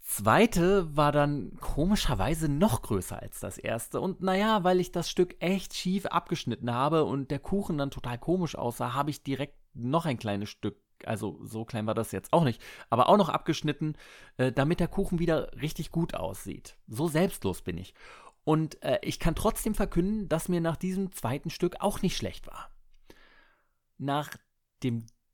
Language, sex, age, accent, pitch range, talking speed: German, male, 30-49, German, 110-170 Hz, 175 wpm